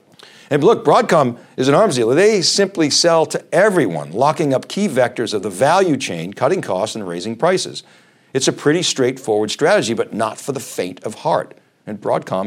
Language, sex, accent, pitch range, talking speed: English, male, American, 100-155 Hz, 190 wpm